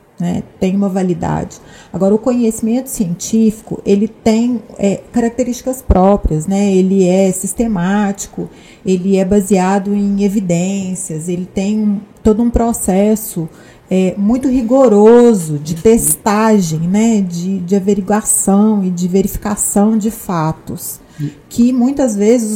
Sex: female